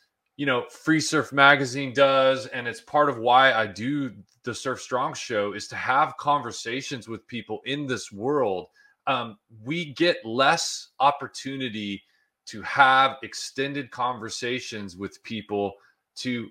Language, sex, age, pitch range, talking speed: English, male, 30-49, 115-145 Hz, 140 wpm